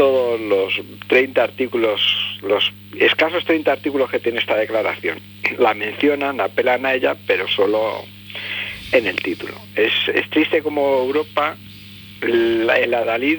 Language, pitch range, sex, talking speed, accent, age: Spanish, 100-150 Hz, male, 130 wpm, Spanish, 50-69